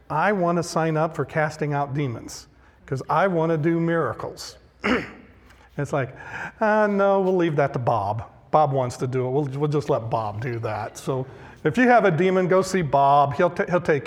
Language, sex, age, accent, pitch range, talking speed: English, male, 50-69, American, 125-180 Hz, 205 wpm